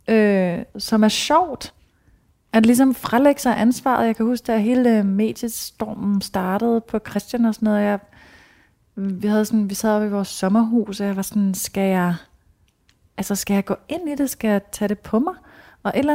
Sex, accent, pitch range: female, native, 195-235 Hz